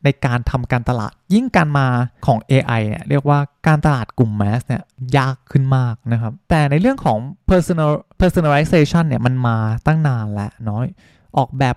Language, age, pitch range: Thai, 20-39, 120-155 Hz